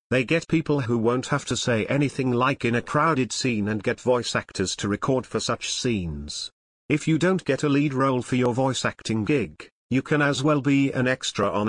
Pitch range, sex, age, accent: 110-145 Hz, male, 50-69, British